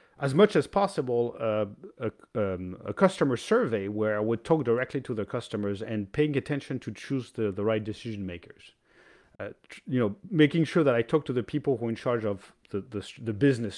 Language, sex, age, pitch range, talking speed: English, male, 40-59, 105-145 Hz, 215 wpm